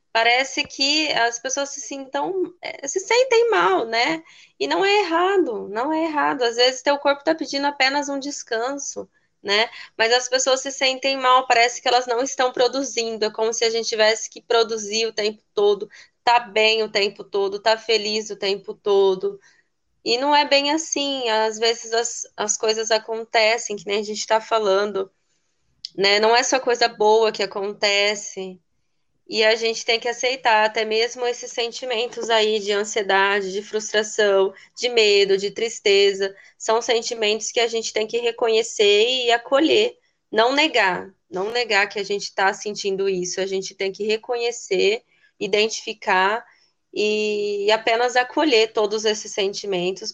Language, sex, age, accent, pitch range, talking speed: Portuguese, female, 20-39, Brazilian, 210-275 Hz, 165 wpm